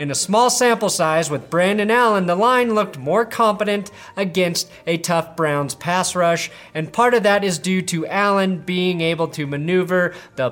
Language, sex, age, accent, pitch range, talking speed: English, male, 30-49, American, 150-200 Hz, 185 wpm